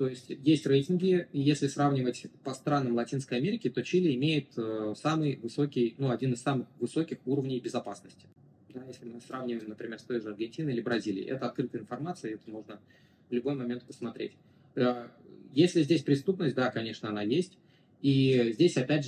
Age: 20-39